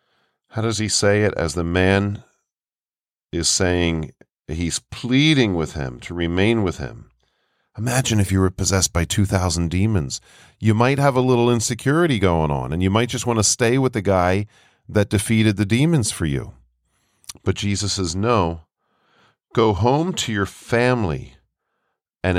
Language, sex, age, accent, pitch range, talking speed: English, male, 40-59, American, 80-105 Hz, 160 wpm